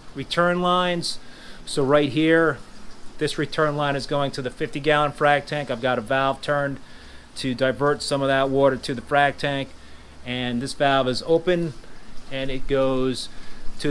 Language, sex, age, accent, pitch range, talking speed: English, male, 30-49, American, 125-160 Hz, 175 wpm